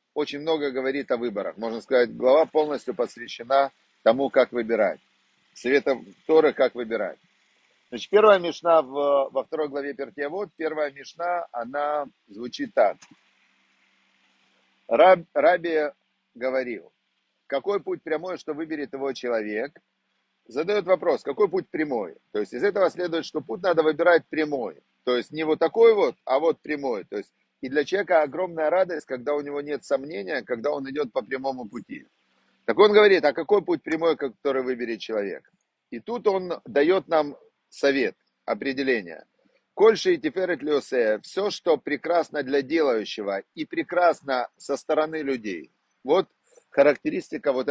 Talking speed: 145 wpm